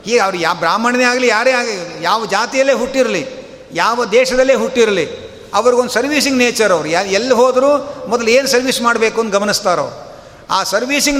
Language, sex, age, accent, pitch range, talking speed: Kannada, male, 50-69, native, 205-255 Hz, 150 wpm